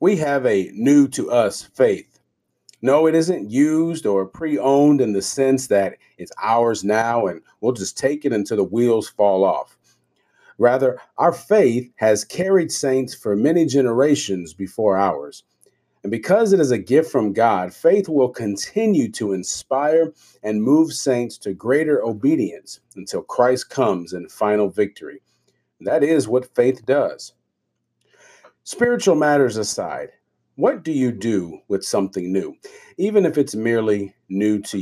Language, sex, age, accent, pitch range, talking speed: English, male, 40-59, American, 100-155 Hz, 145 wpm